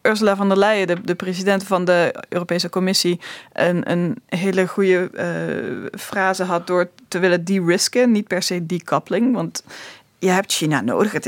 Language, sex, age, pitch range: Dutch, female, 20-39, 180-215 Hz